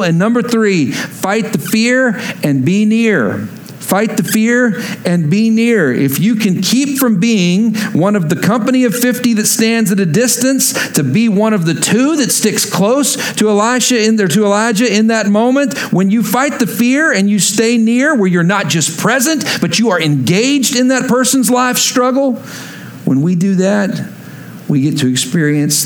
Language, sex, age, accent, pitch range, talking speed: English, male, 50-69, American, 145-225 Hz, 190 wpm